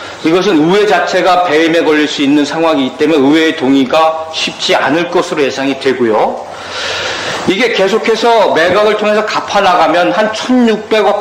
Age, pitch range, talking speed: 40-59, 170-220 Hz, 130 wpm